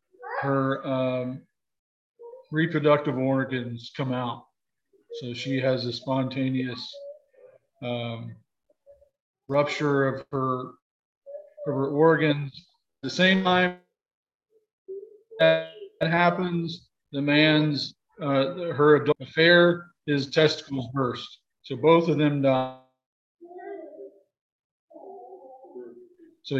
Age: 50-69